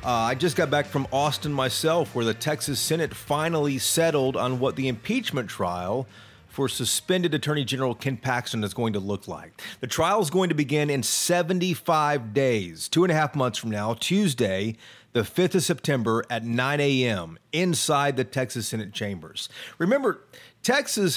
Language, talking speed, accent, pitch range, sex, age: English, 175 wpm, American, 120-165 Hz, male, 40-59